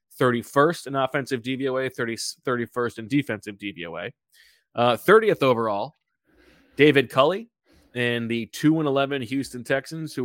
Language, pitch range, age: English, 115-140 Hz, 20-39